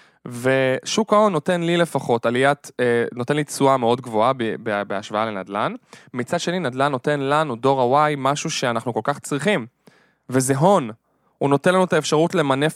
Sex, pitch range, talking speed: male, 125-180 Hz, 170 wpm